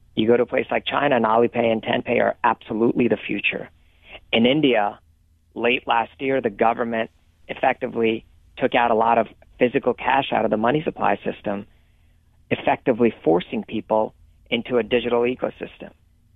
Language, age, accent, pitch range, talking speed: English, 40-59, American, 85-130 Hz, 155 wpm